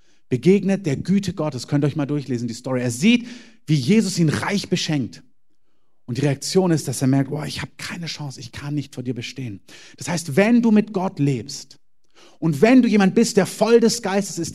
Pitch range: 145-210 Hz